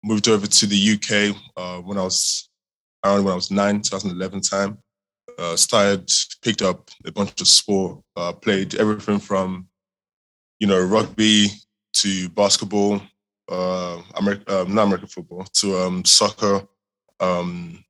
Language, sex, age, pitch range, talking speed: English, male, 20-39, 95-105 Hz, 145 wpm